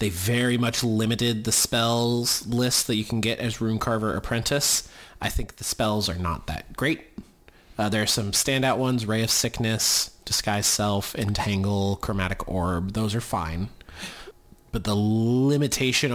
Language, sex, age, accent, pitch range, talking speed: English, male, 30-49, American, 95-115 Hz, 160 wpm